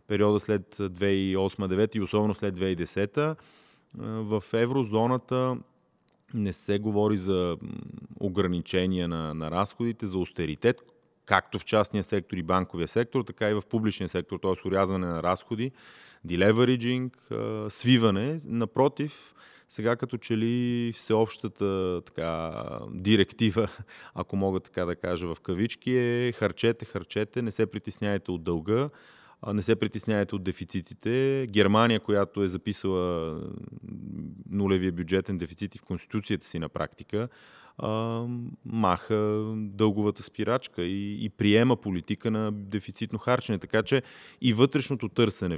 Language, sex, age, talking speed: Bulgarian, male, 30-49, 120 wpm